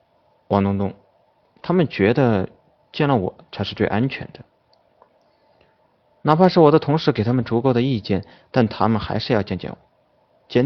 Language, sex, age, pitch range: Chinese, male, 30-49, 105-145 Hz